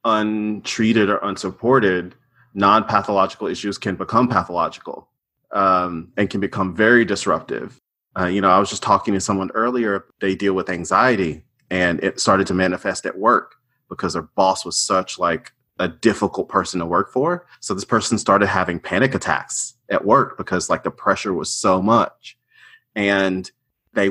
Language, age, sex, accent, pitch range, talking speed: English, 30-49, male, American, 90-110 Hz, 160 wpm